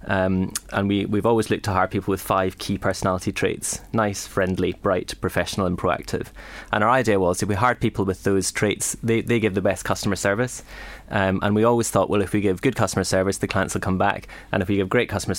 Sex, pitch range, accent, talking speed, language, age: male, 95-110 Hz, British, 235 wpm, English, 20-39